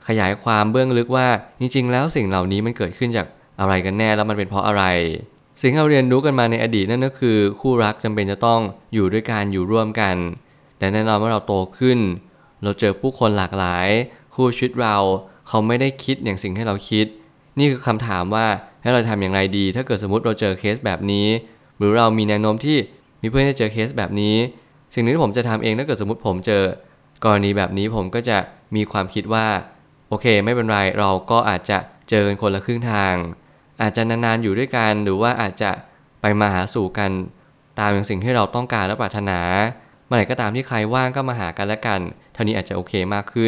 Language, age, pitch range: Thai, 20-39, 100-125 Hz